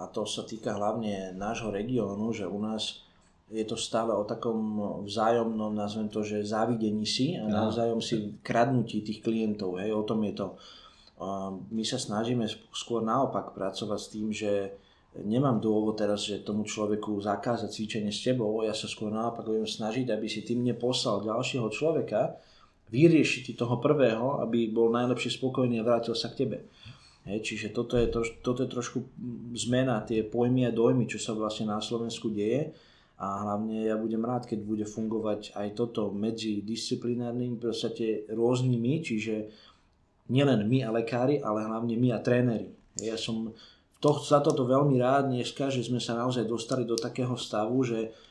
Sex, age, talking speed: male, 20-39, 165 wpm